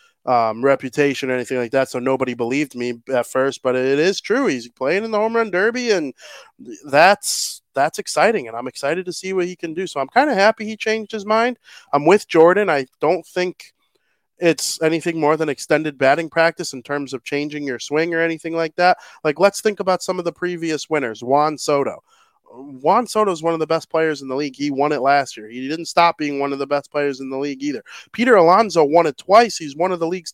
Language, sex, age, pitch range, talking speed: English, male, 20-39, 135-180 Hz, 235 wpm